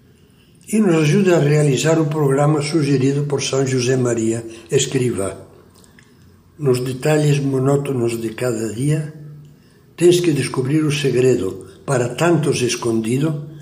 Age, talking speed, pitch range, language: 60-79, 120 wpm, 125-155 Hz, Portuguese